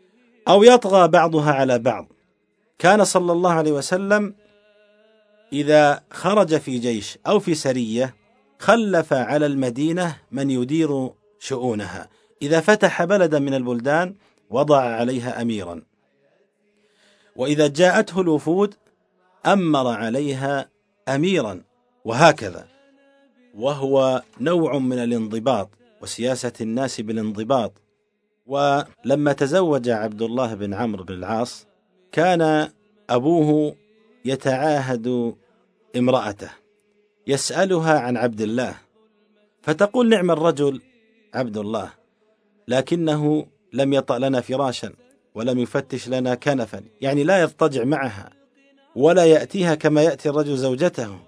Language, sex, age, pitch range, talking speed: Arabic, male, 50-69, 125-195 Hz, 100 wpm